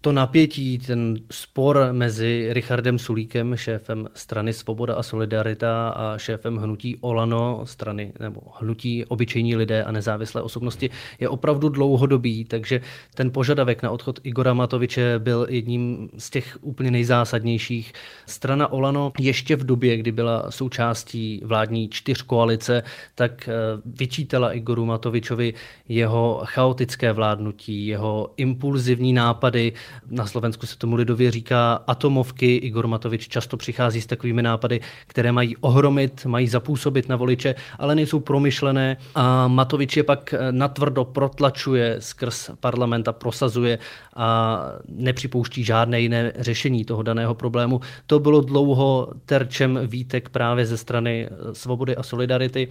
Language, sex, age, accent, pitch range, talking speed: Czech, male, 20-39, native, 115-130 Hz, 125 wpm